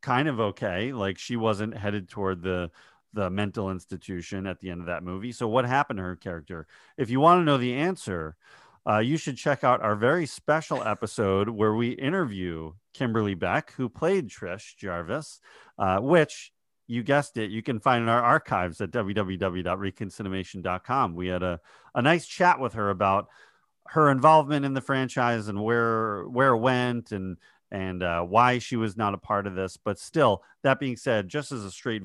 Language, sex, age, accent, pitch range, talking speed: English, male, 40-59, American, 95-125 Hz, 190 wpm